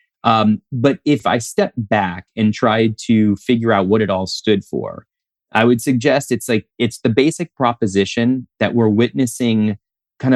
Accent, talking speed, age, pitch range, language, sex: American, 170 wpm, 30-49, 110-130 Hz, English, male